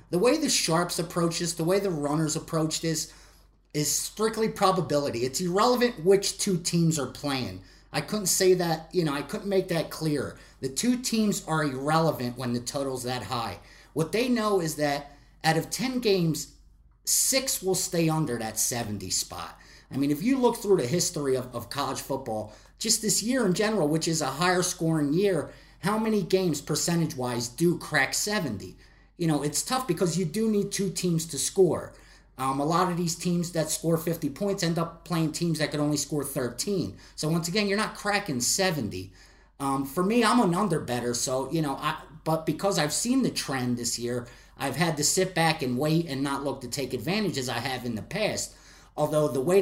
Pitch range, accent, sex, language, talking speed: 140-185 Hz, American, male, English, 205 wpm